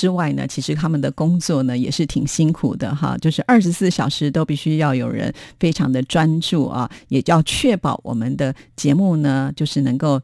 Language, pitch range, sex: Chinese, 140-175 Hz, female